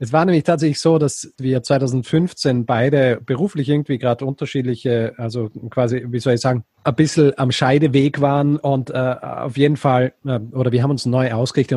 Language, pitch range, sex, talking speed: German, 120-140 Hz, male, 185 wpm